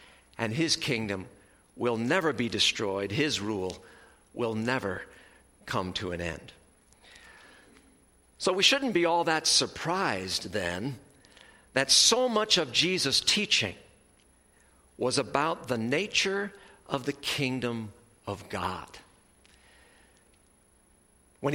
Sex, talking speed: male, 110 wpm